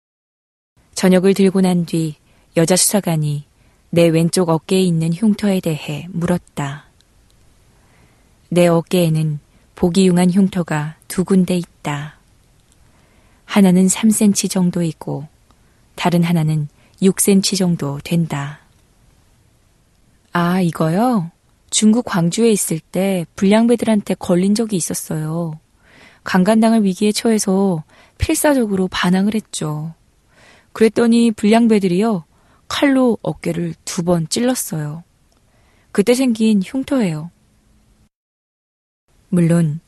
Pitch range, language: 160-195 Hz, Korean